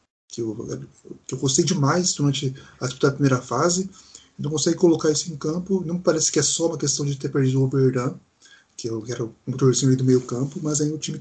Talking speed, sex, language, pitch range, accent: 220 wpm, male, Portuguese, 130-165 Hz, Brazilian